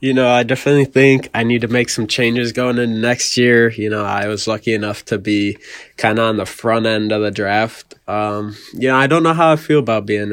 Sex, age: male, 20-39